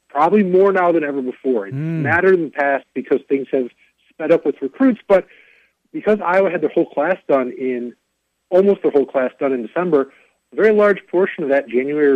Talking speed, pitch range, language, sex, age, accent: 200 wpm, 125-175 Hz, English, male, 50-69, American